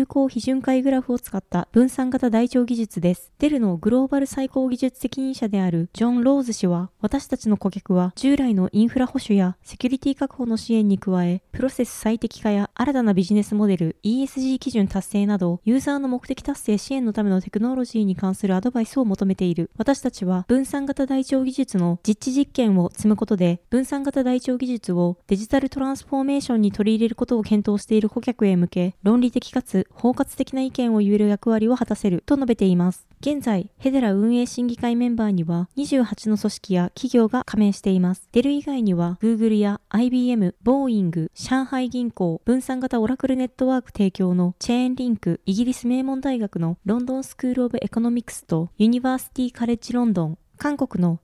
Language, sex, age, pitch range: Japanese, female, 20-39, 195-260 Hz